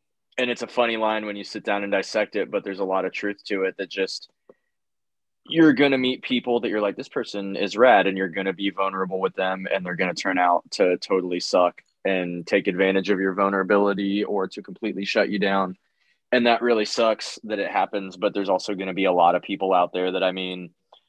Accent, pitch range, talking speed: American, 95-105 Hz, 240 wpm